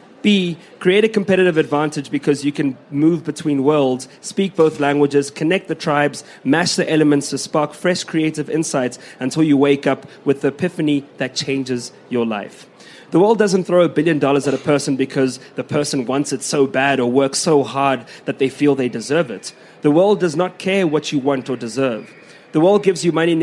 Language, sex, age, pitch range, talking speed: English, male, 30-49, 135-160 Hz, 200 wpm